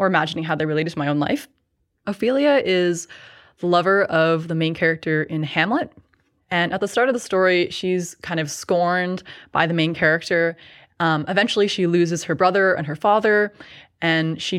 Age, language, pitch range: 20-39, English, 160-200 Hz